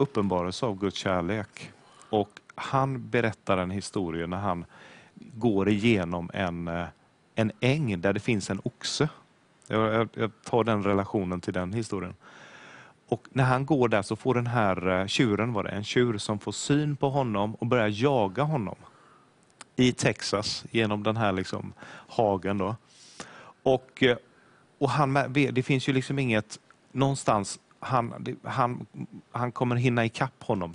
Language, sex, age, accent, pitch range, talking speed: English, male, 30-49, Swedish, 100-130 Hz, 150 wpm